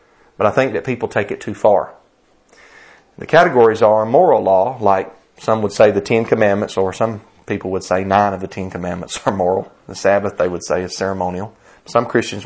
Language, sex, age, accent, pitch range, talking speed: English, male, 40-59, American, 100-125 Hz, 200 wpm